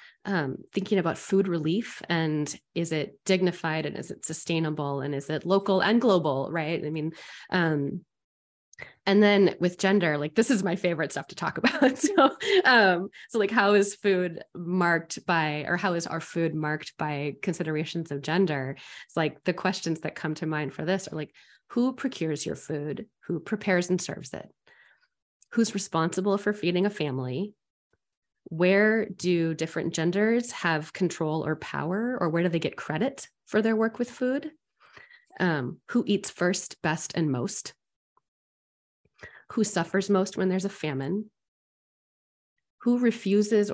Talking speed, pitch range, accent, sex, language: 160 wpm, 155-200 Hz, American, female, English